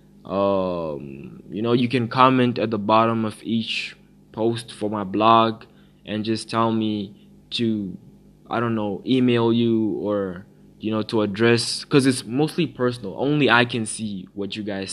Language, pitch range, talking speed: English, 100-115 Hz, 165 wpm